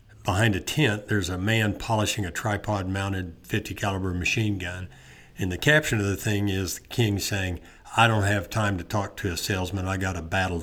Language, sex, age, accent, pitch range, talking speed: English, male, 50-69, American, 90-105 Hz, 200 wpm